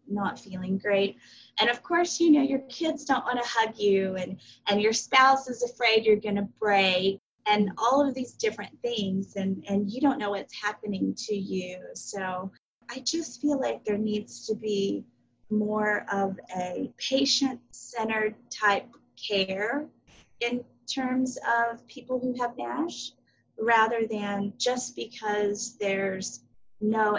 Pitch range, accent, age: 200-275 Hz, American, 30-49